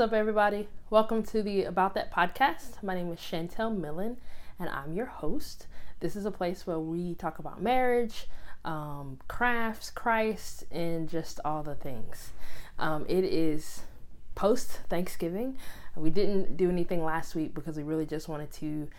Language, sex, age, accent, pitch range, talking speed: English, female, 20-39, American, 150-190 Hz, 160 wpm